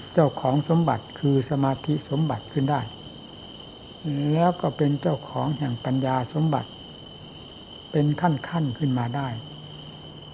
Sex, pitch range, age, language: male, 125-155 Hz, 60-79, Thai